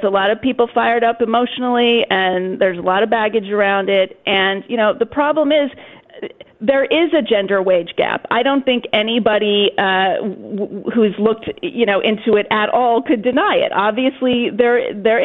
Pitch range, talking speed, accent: 200-260 Hz, 180 wpm, American